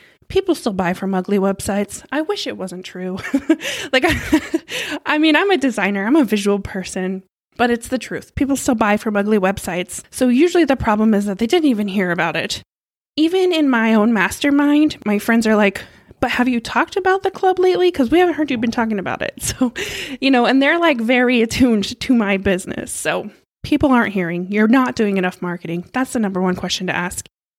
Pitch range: 205-265 Hz